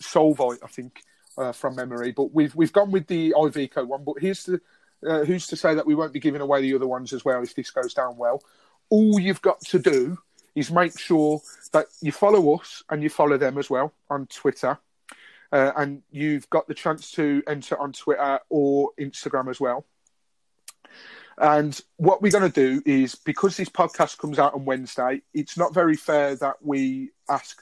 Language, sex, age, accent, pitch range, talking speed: English, male, 30-49, British, 135-170 Hz, 200 wpm